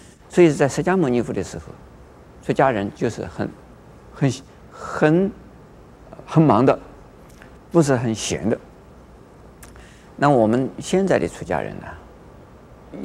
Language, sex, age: Chinese, male, 50-69